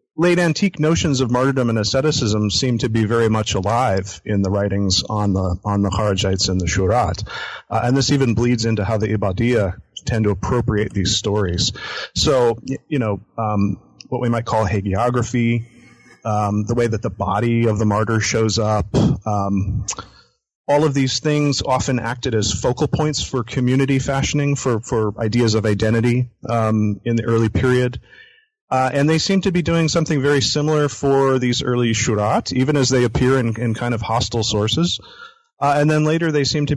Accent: American